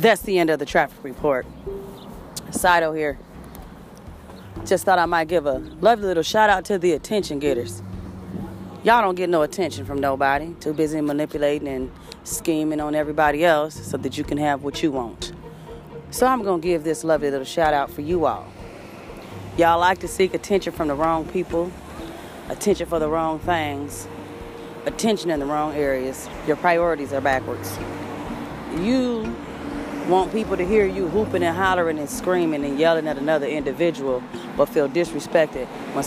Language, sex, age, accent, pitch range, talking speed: English, female, 30-49, American, 140-185 Hz, 165 wpm